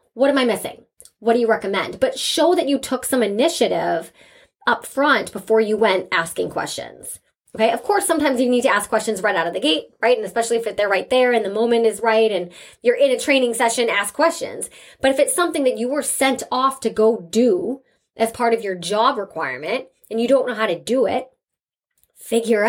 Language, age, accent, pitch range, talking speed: English, 20-39, American, 205-275 Hz, 220 wpm